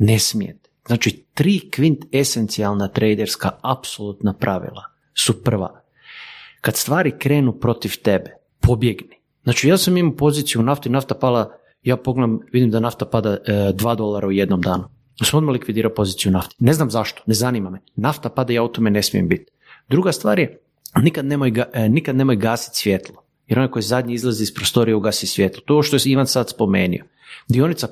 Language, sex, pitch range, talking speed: Croatian, male, 110-145 Hz, 180 wpm